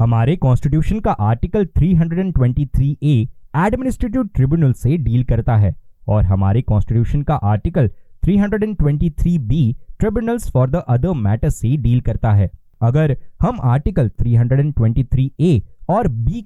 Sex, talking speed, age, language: male, 65 wpm, 20-39, Hindi